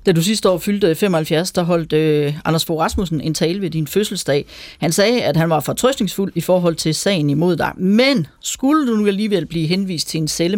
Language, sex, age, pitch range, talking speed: Danish, female, 40-59, 160-215 Hz, 220 wpm